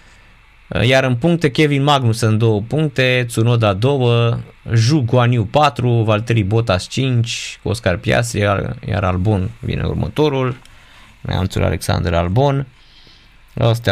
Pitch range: 105-135 Hz